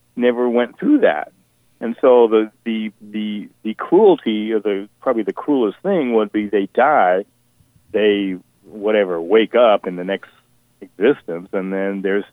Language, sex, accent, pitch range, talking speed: English, male, American, 105-130 Hz, 155 wpm